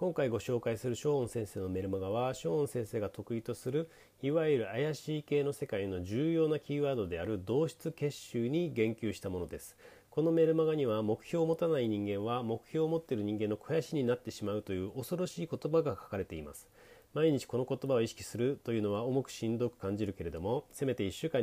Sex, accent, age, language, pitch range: male, native, 40-59, Japanese, 105-145 Hz